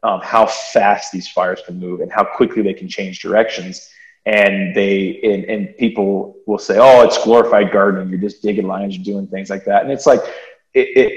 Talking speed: 210 wpm